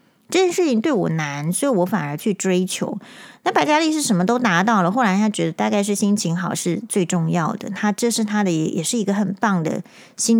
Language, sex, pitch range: Chinese, female, 180-230 Hz